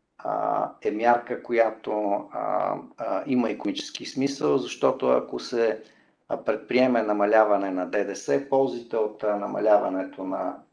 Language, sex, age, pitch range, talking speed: Bulgarian, male, 50-69, 105-125 Hz, 95 wpm